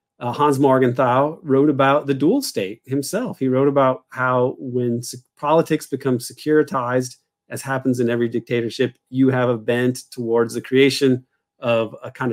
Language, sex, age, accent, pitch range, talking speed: English, male, 40-59, American, 120-140 Hz, 155 wpm